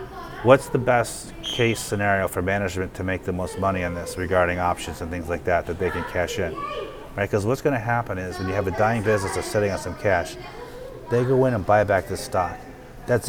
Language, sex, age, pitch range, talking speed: English, male, 30-49, 95-120 Hz, 235 wpm